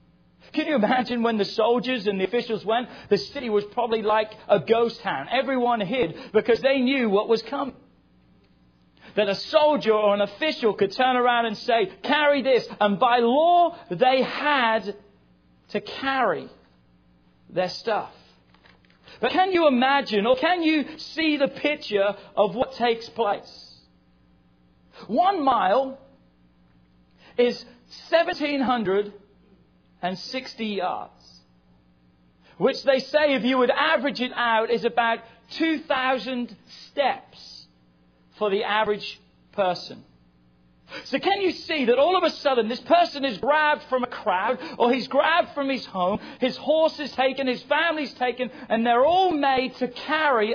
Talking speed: 145 wpm